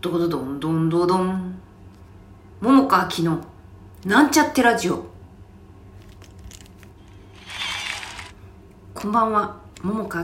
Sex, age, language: female, 40-59, Japanese